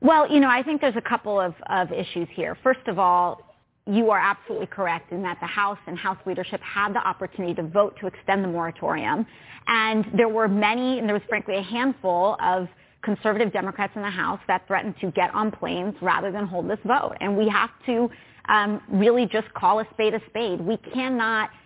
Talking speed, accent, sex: 210 wpm, American, female